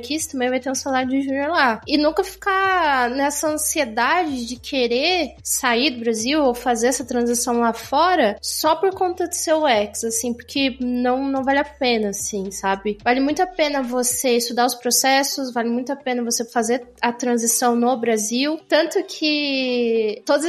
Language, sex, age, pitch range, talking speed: Portuguese, female, 20-39, 235-295 Hz, 180 wpm